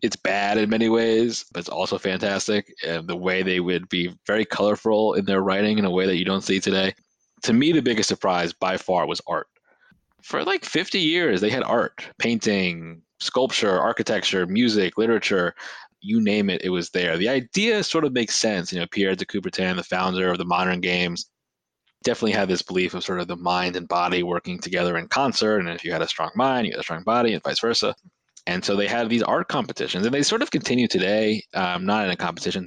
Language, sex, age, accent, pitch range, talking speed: English, male, 20-39, American, 90-115 Hz, 220 wpm